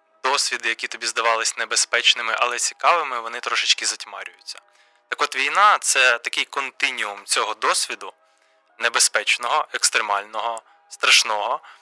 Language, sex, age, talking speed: Ukrainian, male, 20-39, 105 wpm